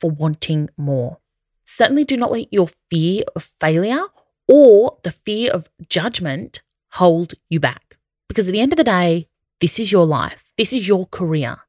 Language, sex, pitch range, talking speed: English, female, 170-245 Hz, 175 wpm